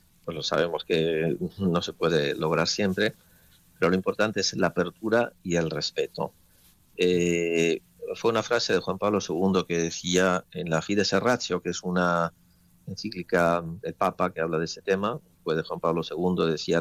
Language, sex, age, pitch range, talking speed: Spanish, male, 40-59, 85-95 Hz, 175 wpm